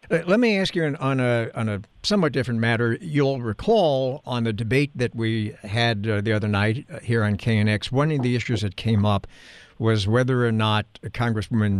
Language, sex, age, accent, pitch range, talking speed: English, male, 60-79, American, 105-125 Hz, 195 wpm